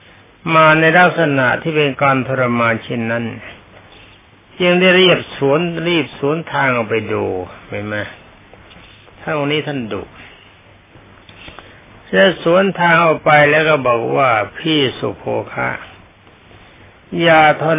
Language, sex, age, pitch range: Thai, male, 60-79, 105-150 Hz